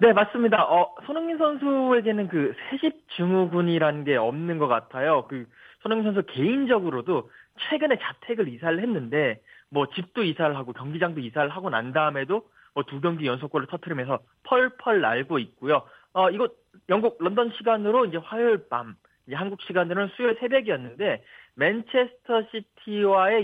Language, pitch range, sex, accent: Korean, 155-235 Hz, male, native